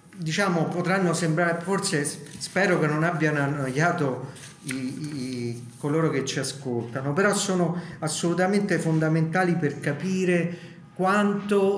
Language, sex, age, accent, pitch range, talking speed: Italian, male, 50-69, native, 140-175 Hz, 110 wpm